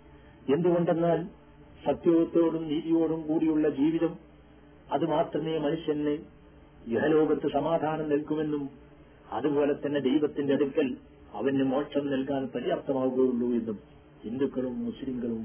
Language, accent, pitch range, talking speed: Malayalam, native, 130-155 Hz, 80 wpm